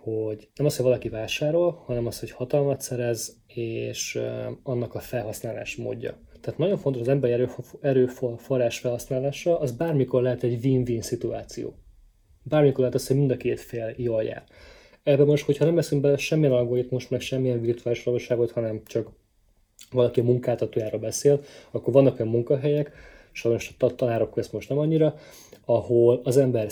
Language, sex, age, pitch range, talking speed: Hungarian, male, 20-39, 115-135 Hz, 160 wpm